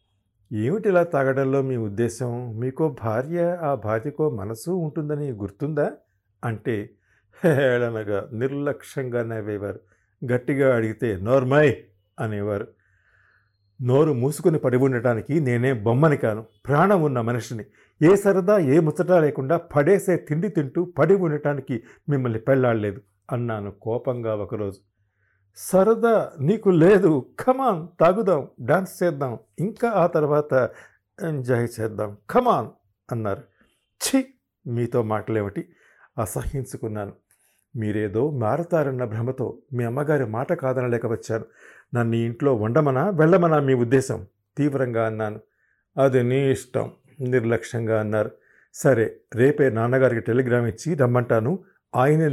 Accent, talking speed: native, 105 wpm